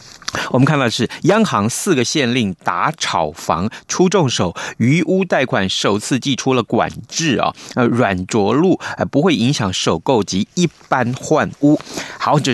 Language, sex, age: Chinese, male, 30-49